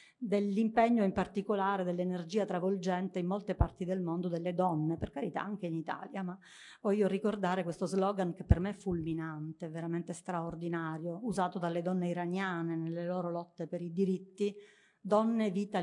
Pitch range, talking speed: 180-210 Hz, 155 wpm